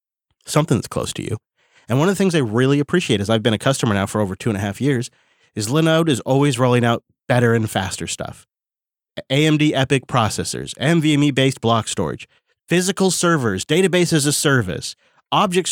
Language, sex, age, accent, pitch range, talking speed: English, male, 30-49, American, 110-140 Hz, 185 wpm